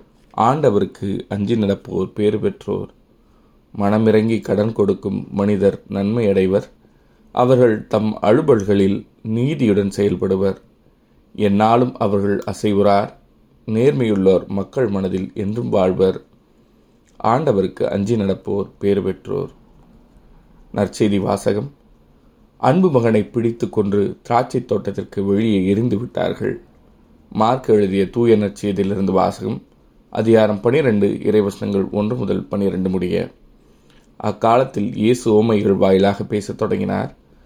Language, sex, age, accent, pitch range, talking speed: Tamil, male, 30-49, native, 100-110 Hz, 90 wpm